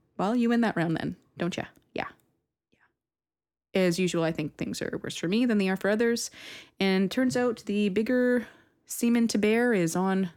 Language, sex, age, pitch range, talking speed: English, female, 20-39, 160-215 Hz, 195 wpm